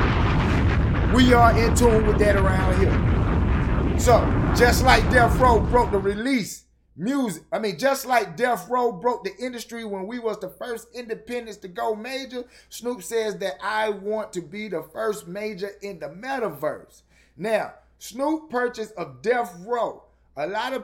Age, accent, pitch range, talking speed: 30-49, American, 155-225 Hz, 165 wpm